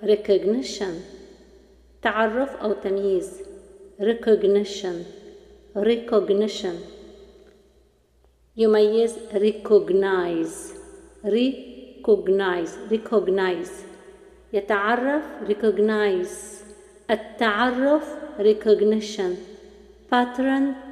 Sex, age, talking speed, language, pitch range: female, 50-69, 45 wpm, Arabic, 200-270 Hz